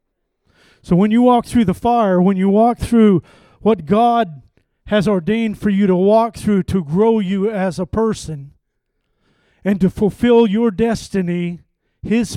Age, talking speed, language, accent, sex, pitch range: 50-69, 155 wpm, English, American, male, 150-195 Hz